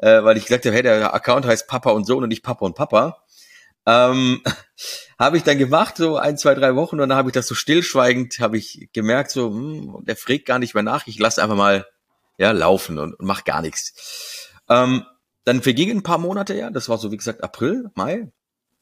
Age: 40-59